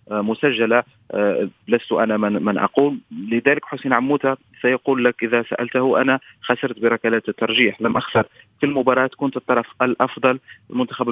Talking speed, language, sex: 140 wpm, Arabic, male